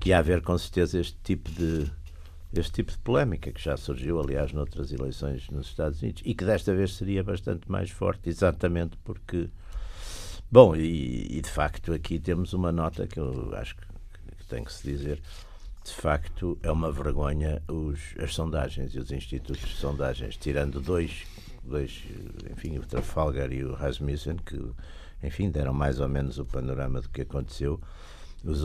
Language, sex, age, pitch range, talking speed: Portuguese, male, 60-79, 70-85 Hz, 170 wpm